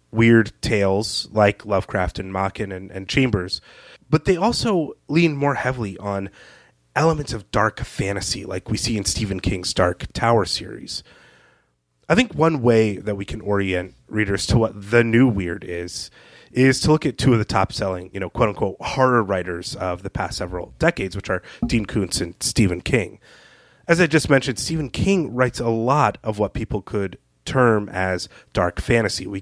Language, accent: English, American